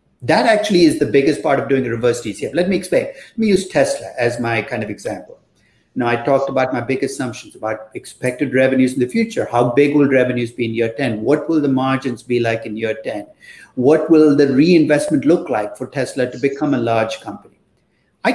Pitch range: 125-160 Hz